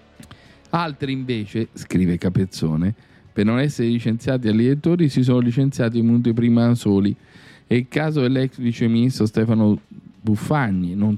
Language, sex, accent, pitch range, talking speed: Italian, male, native, 100-125 Hz, 135 wpm